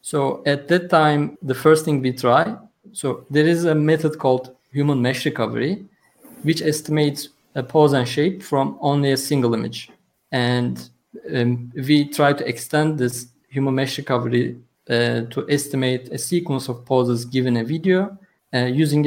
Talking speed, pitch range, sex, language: 160 wpm, 125-155 Hz, male, English